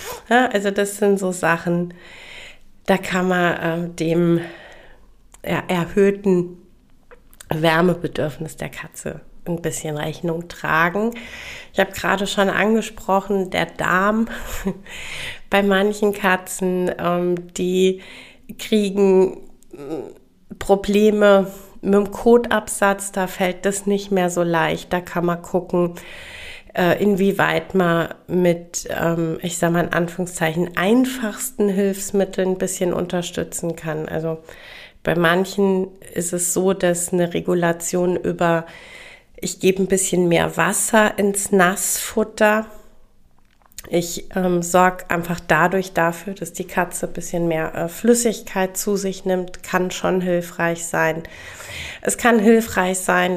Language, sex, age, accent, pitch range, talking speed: German, female, 30-49, German, 170-195 Hz, 115 wpm